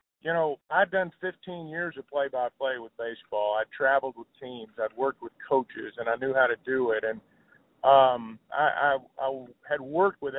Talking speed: 210 wpm